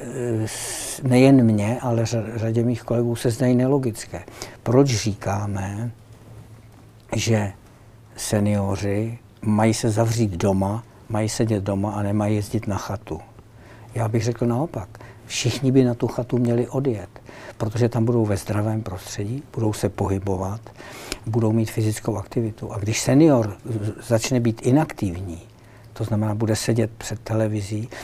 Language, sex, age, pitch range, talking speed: Czech, male, 60-79, 110-120 Hz, 130 wpm